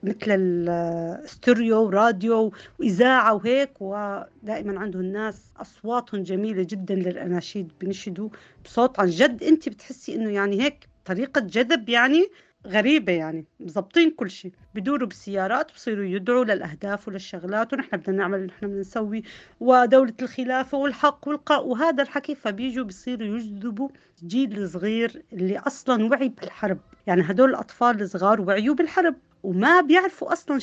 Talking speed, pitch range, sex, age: 125 wpm, 200-260 Hz, female, 40-59